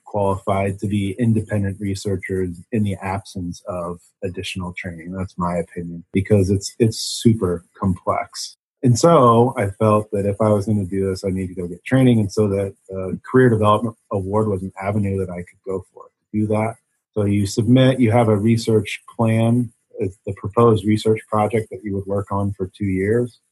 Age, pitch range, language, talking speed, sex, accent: 30-49, 95-110 Hz, English, 195 wpm, male, American